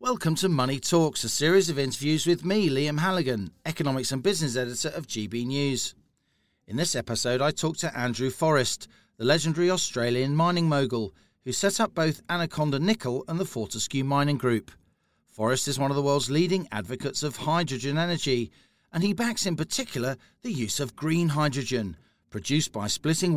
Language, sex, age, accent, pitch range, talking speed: English, male, 40-59, British, 120-165 Hz, 170 wpm